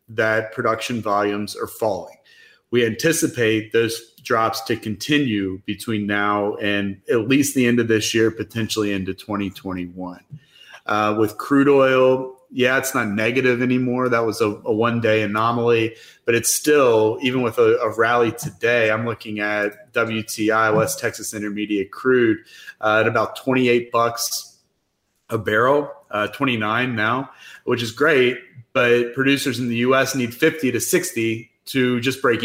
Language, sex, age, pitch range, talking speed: English, male, 30-49, 110-125 Hz, 150 wpm